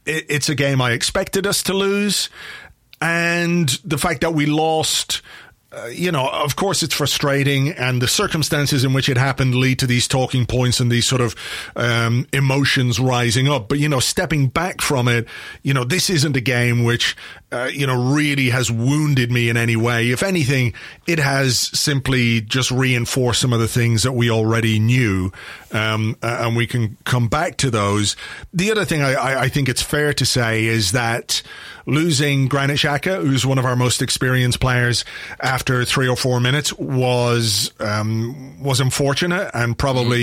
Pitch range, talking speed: 120-145 Hz, 180 wpm